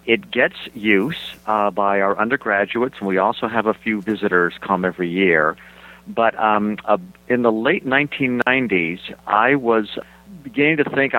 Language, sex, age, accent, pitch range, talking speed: English, male, 50-69, American, 95-120 Hz, 155 wpm